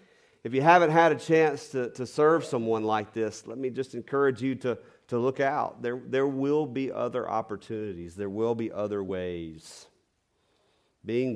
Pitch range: 115-185 Hz